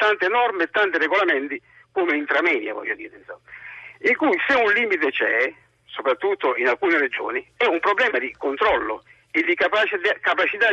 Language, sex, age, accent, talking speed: Italian, male, 50-69, native, 155 wpm